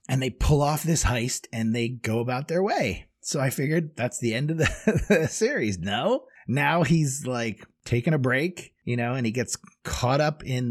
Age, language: 30-49, English